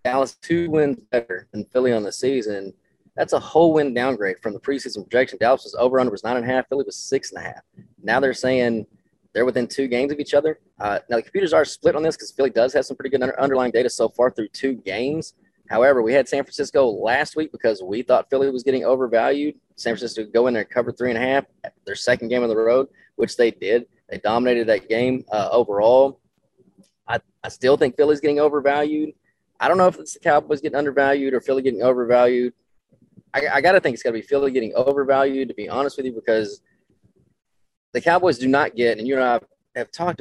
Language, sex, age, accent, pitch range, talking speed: English, male, 30-49, American, 120-145 Hz, 235 wpm